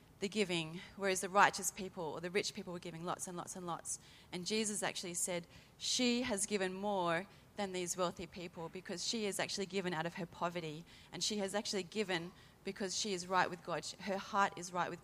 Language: English